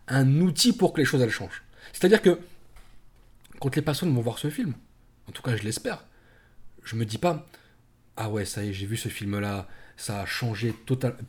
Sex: male